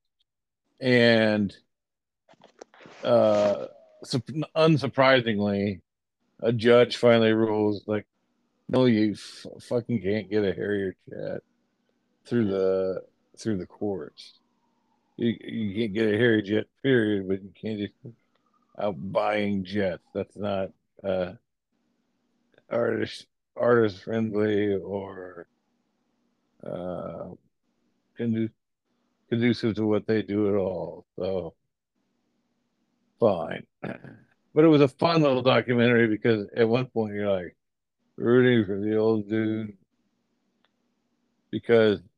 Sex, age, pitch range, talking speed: male, 50-69, 100-120 Hz, 110 wpm